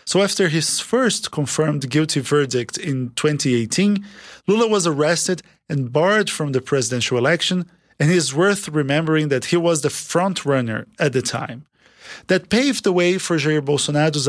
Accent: Brazilian